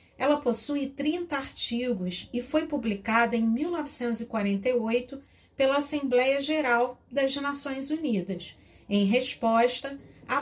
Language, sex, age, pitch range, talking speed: Portuguese, female, 40-59, 225-285 Hz, 105 wpm